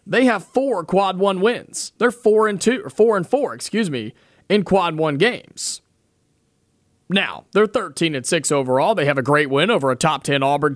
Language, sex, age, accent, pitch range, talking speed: English, male, 30-49, American, 145-195 Hz, 200 wpm